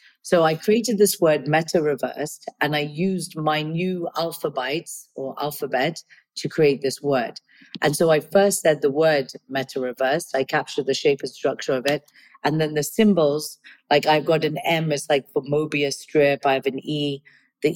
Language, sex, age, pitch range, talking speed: English, female, 40-59, 145-170 Hz, 180 wpm